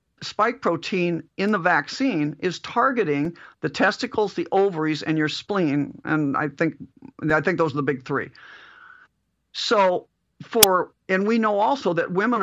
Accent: American